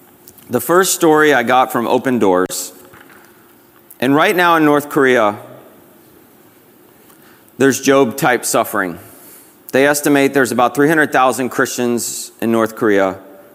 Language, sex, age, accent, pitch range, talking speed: English, male, 40-59, American, 100-125 Hz, 120 wpm